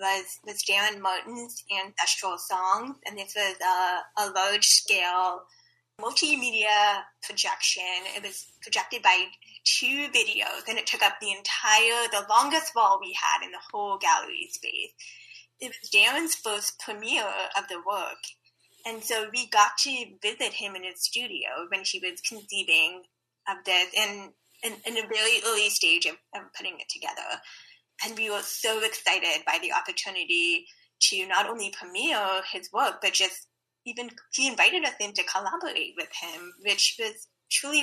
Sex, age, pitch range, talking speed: female, 10-29, 190-240 Hz, 160 wpm